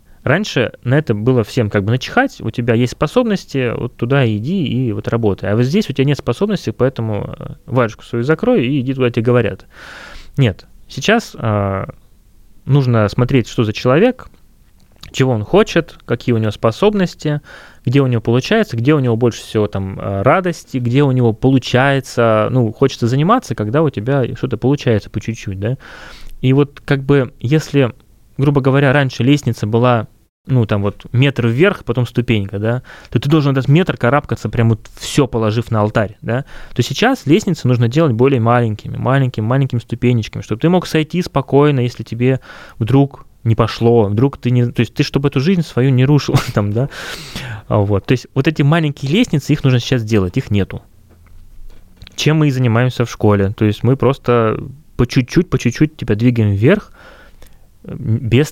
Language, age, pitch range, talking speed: Russian, 20-39, 115-140 Hz, 175 wpm